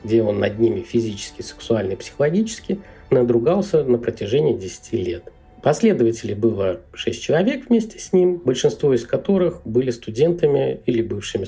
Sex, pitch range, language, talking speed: male, 110-160 Hz, Russian, 140 wpm